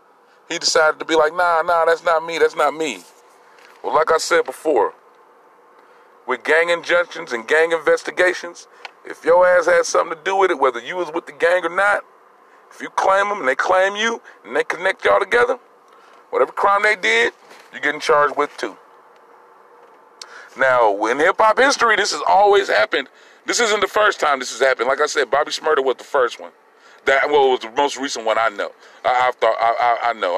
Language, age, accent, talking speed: English, 40-59, American, 205 wpm